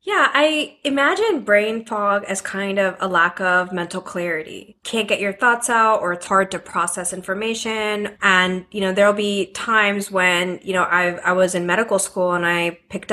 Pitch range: 180-210 Hz